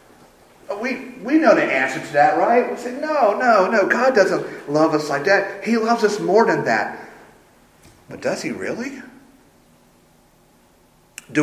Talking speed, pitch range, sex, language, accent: 160 wpm, 110-155 Hz, male, English, American